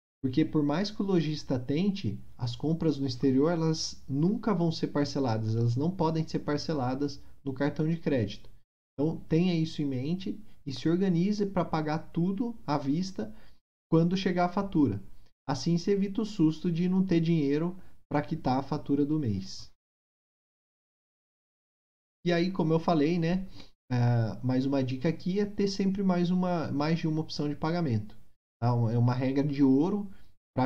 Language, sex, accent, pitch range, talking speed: Portuguese, male, Brazilian, 130-170 Hz, 165 wpm